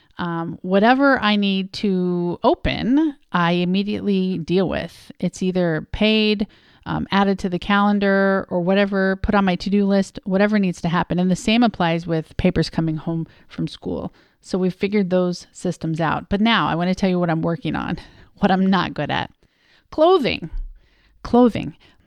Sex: female